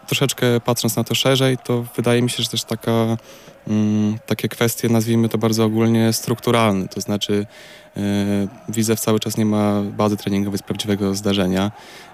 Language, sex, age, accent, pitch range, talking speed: Polish, male, 20-39, native, 105-115 Hz, 170 wpm